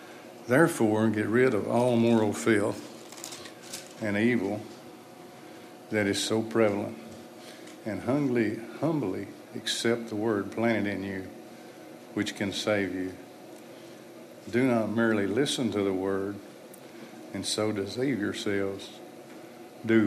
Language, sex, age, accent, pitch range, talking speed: English, male, 60-79, American, 105-115 Hz, 115 wpm